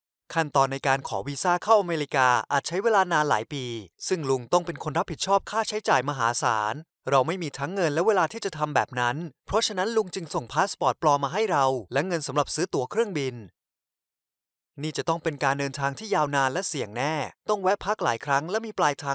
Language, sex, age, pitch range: Thai, male, 20-39, 130-185 Hz